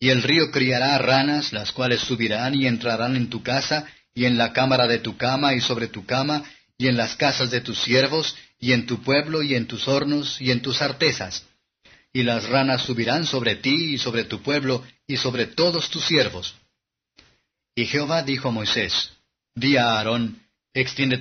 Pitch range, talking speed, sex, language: 120-140 Hz, 190 wpm, male, Spanish